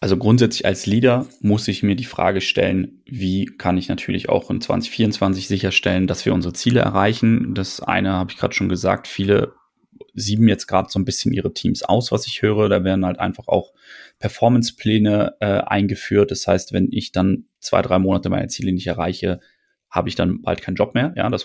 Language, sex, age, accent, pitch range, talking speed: German, male, 30-49, German, 95-115 Hz, 200 wpm